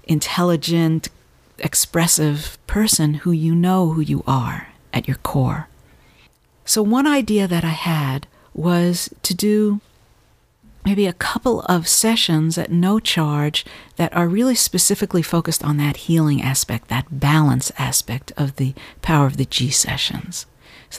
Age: 50-69